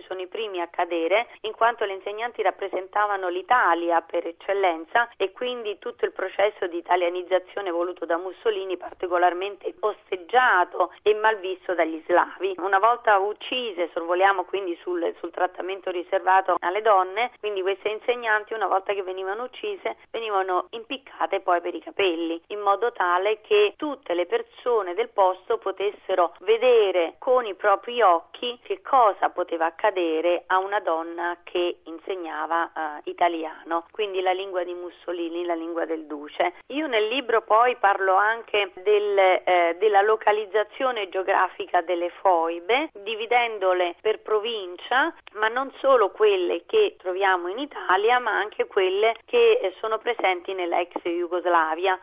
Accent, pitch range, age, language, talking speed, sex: native, 180-240 Hz, 30-49, Italian, 140 wpm, female